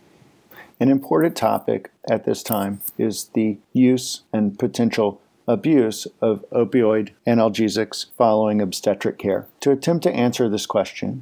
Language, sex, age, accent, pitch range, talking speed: English, male, 50-69, American, 105-120 Hz, 130 wpm